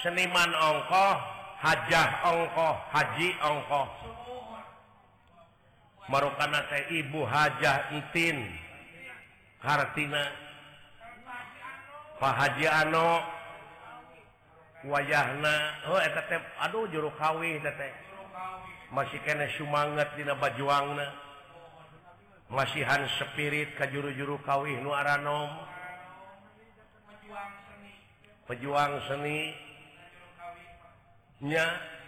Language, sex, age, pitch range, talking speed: Indonesian, male, 50-69, 140-160 Hz, 70 wpm